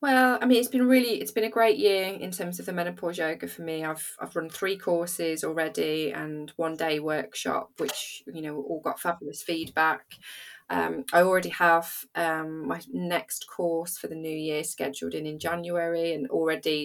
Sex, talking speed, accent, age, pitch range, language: female, 195 wpm, British, 20-39, 155-180 Hz, English